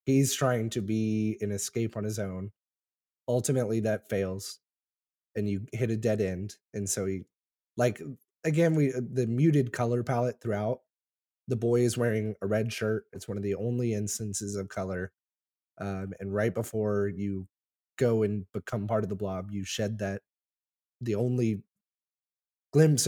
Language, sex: English, male